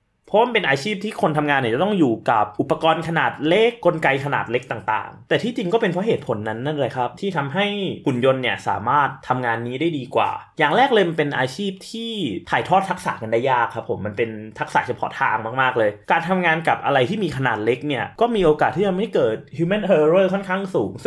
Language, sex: English, male